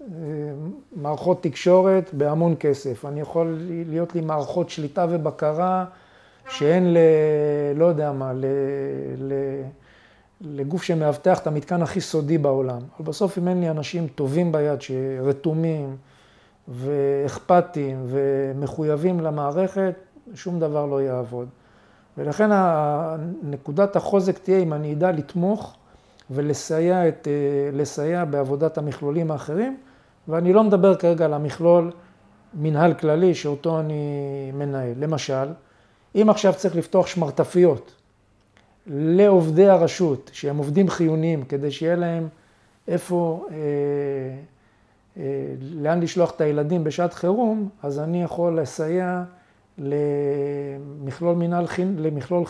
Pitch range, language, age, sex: 140-175 Hz, Hebrew, 50-69, male